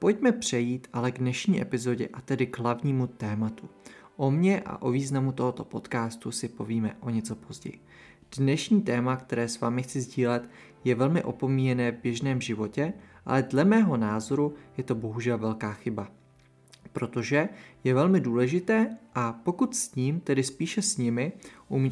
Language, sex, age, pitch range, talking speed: Czech, male, 20-39, 120-150 Hz, 160 wpm